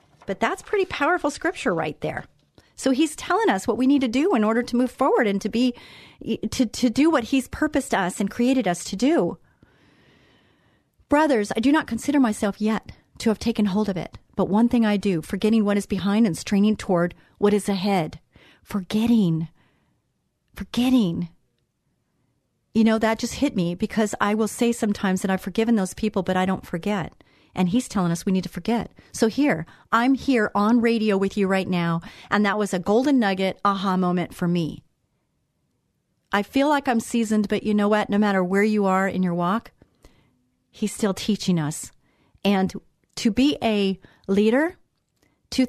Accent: American